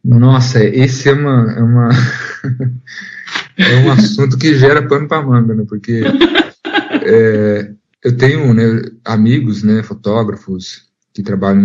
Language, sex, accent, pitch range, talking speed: Portuguese, male, Brazilian, 105-130 Hz, 130 wpm